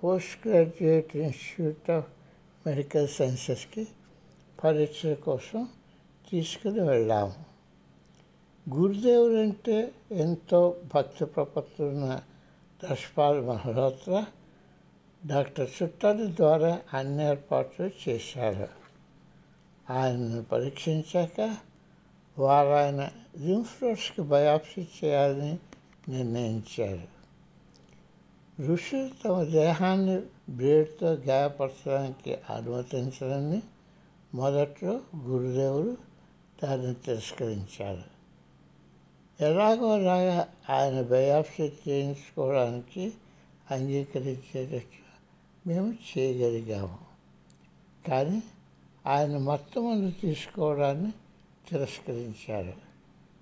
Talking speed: 55 wpm